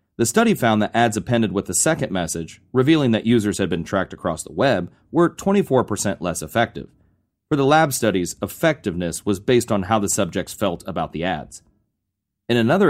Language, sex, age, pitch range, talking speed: English, male, 30-49, 95-125 Hz, 185 wpm